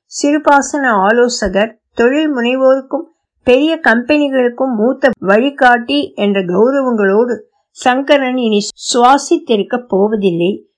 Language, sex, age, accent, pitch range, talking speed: Tamil, female, 60-79, native, 220-270 Hz, 80 wpm